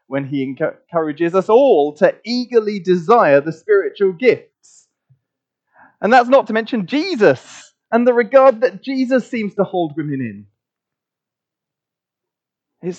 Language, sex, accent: English, male, British